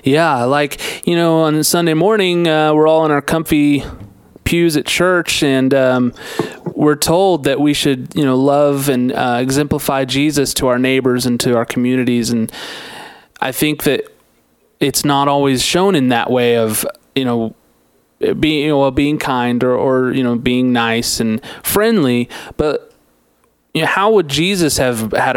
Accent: American